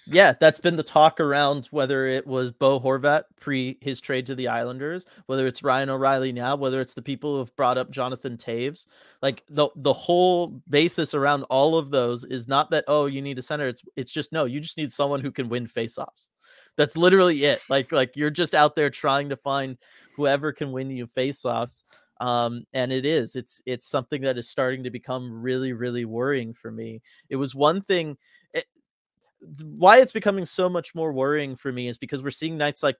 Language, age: English, 30-49